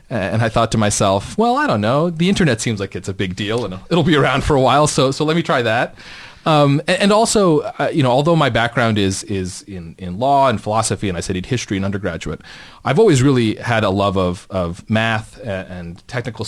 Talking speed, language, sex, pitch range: 235 wpm, English, male, 95-130 Hz